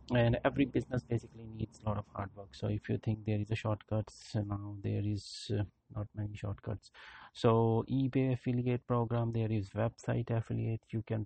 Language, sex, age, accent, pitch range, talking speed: English, male, 30-49, Indian, 105-115 Hz, 185 wpm